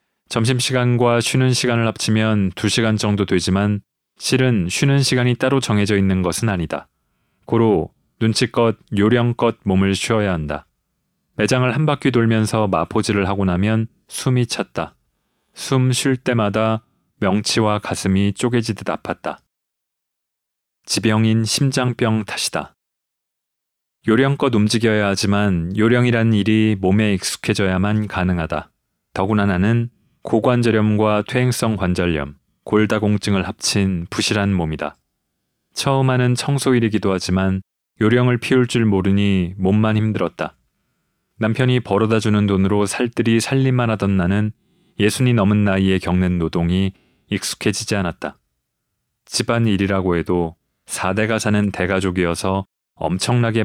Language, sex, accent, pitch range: Korean, male, native, 95-120 Hz